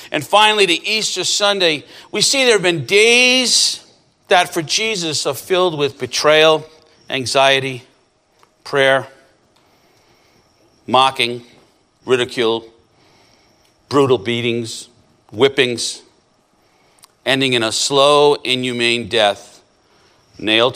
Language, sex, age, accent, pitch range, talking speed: English, male, 50-69, American, 120-190 Hz, 95 wpm